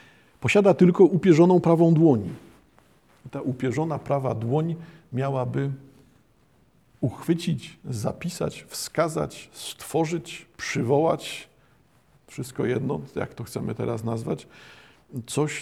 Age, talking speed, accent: 50-69, 90 wpm, native